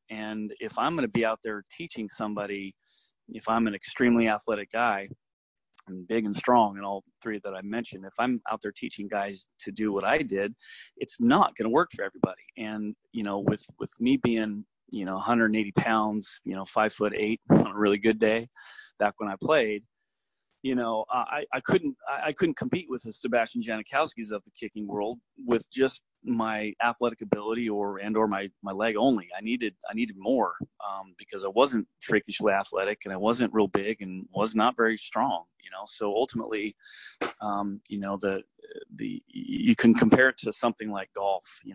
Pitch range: 105-125 Hz